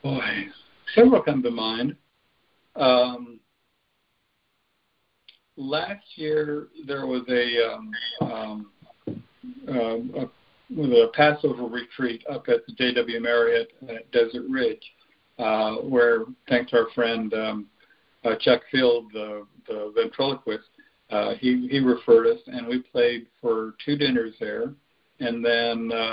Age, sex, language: 50-69, male, English